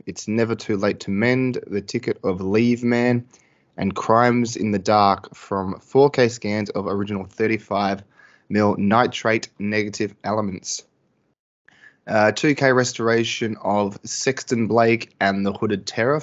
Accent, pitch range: Australian, 100-120 Hz